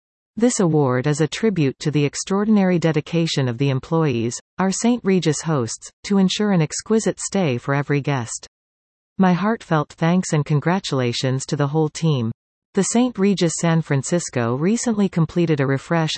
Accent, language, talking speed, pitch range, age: American, English, 155 wpm, 140-180 Hz, 40-59